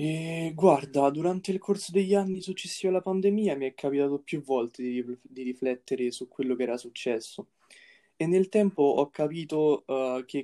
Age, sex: 20-39, male